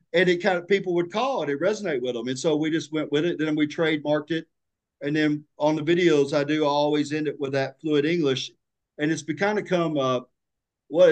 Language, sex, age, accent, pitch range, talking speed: English, male, 50-69, American, 140-165 Hz, 255 wpm